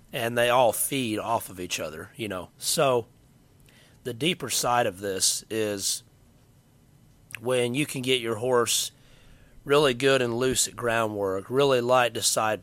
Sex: male